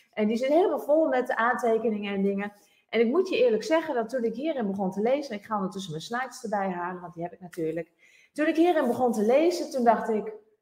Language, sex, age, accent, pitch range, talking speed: Dutch, female, 30-49, Dutch, 185-250 Hz, 250 wpm